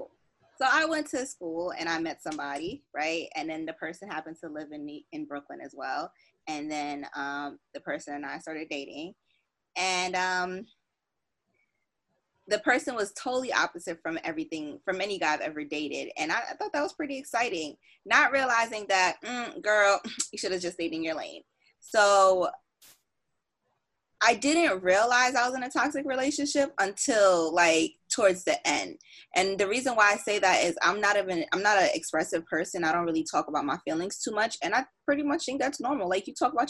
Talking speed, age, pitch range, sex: 195 wpm, 20-39, 165-245 Hz, female